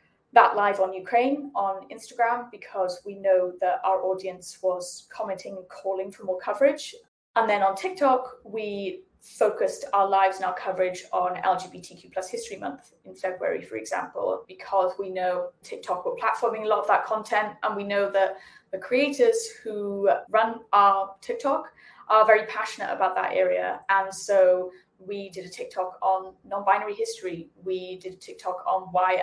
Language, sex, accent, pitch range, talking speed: English, female, British, 185-225 Hz, 165 wpm